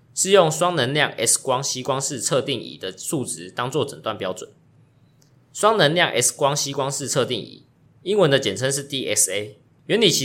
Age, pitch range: 20-39, 125-170 Hz